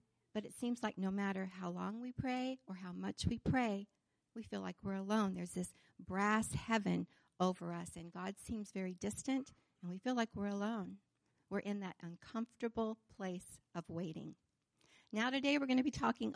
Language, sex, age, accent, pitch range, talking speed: English, female, 50-69, American, 175-230 Hz, 185 wpm